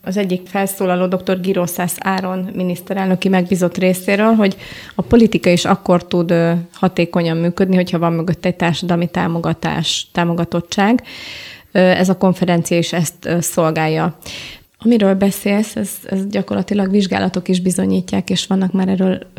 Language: Hungarian